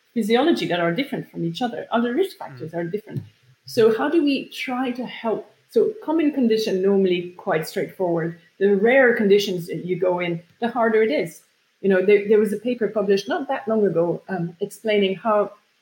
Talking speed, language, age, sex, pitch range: 195 wpm, English, 30-49, female, 185-230 Hz